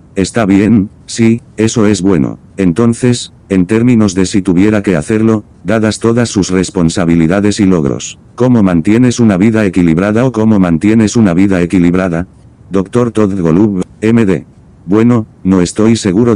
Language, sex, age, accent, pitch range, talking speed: English, male, 60-79, Spanish, 90-110 Hz, 145 wpm